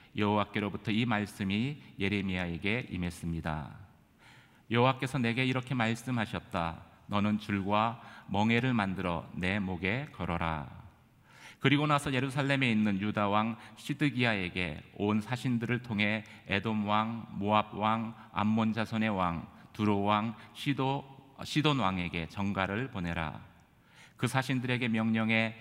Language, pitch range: Korean, 100-125 Hz